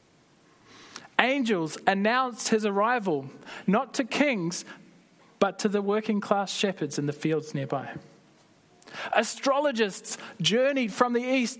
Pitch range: 170-225 Hz